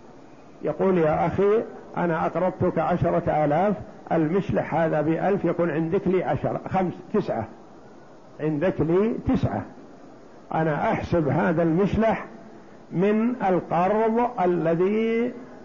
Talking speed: 100 wpm